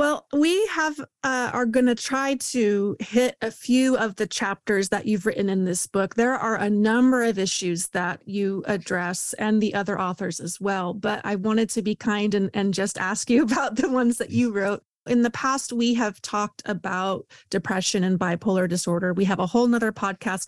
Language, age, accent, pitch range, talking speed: English, 30-49, American, 190-240 Hz, 205 wpm